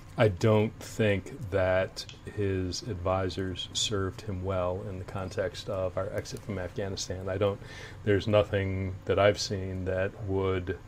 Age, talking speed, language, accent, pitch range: 30-49, 145 wpm, English, American, 95-110 Hz